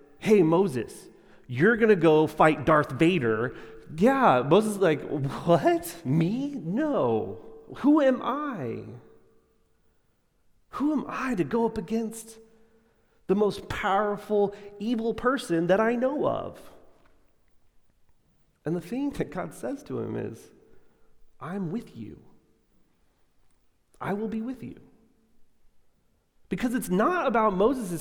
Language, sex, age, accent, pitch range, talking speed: English, male, 30-49, American, 180-245 Hz, 120 wpm